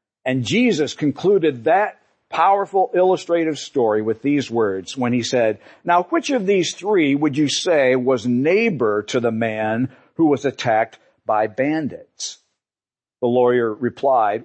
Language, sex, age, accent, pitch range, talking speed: English, male, 50-69, American, 120-170 Hz, 140 wpm